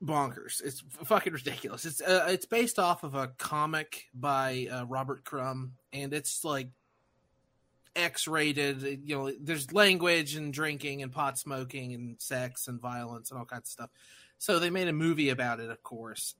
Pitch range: 125-165 Hz